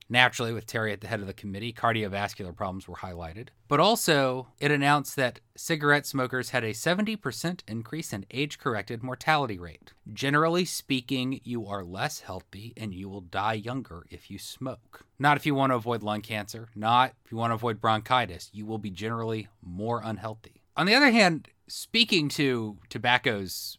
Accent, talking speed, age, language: American, 175 wpm, 30-49, English